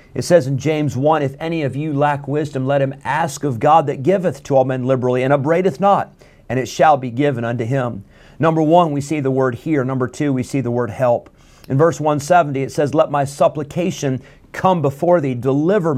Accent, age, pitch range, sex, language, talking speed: American, 50-69, 125-155 Hz, male, English, 220 wpm